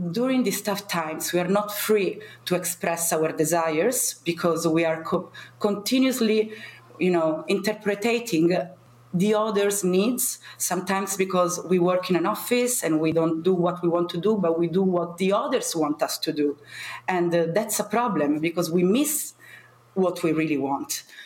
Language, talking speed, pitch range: English, 170 wpm, 160-210 Hz